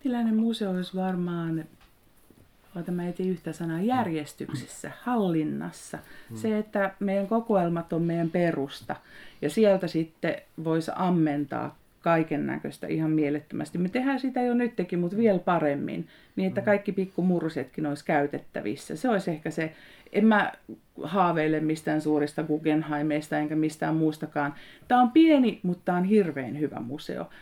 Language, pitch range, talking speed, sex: Finnish, 155-205 Hz, 130 wpm, female